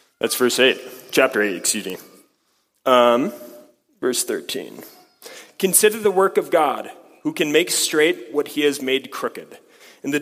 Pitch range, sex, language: 130-170 Hz, male, English